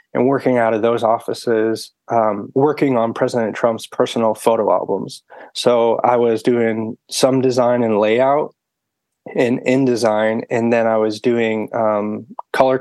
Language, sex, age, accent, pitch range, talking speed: English, male, 20-39, American, 110-125 Hz, 145 wpm